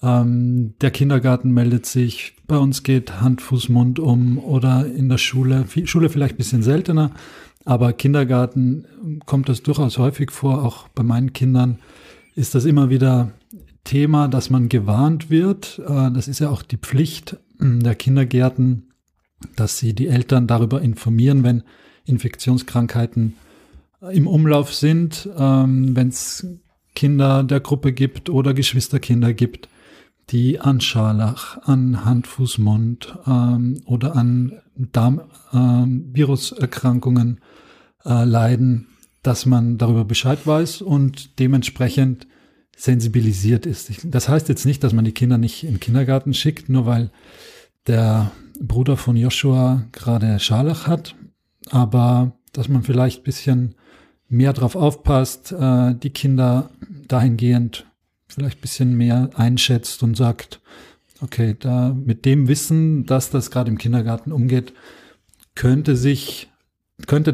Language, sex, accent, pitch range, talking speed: German, male, German, 120-135 Hz, 130 wpm